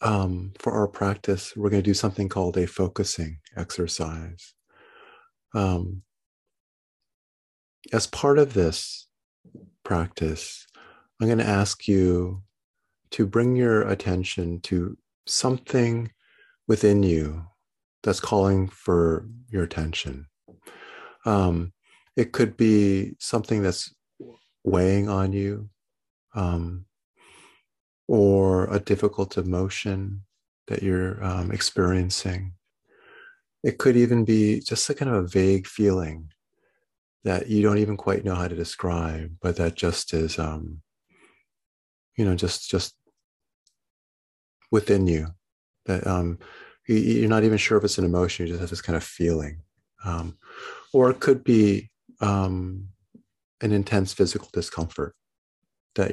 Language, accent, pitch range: English, American, 85-105 Hz